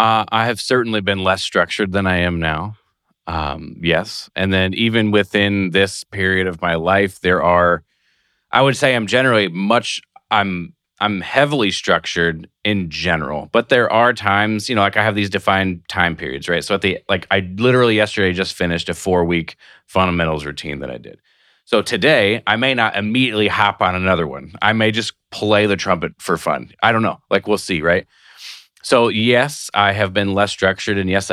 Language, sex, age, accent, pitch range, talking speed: English, male, 30-49, American, 90-110 Hz, 195 wpm